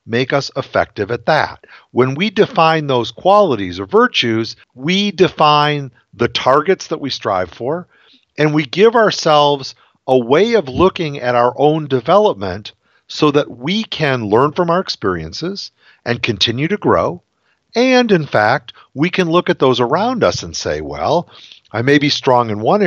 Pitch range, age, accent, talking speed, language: 120-180 Hz, 50-69, American, 165 wpm, English